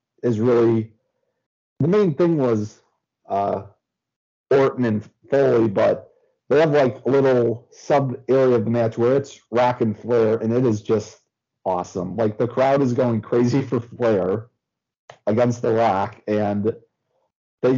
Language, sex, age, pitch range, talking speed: English, male, 40-59, 110-130 Hz, 150 wpm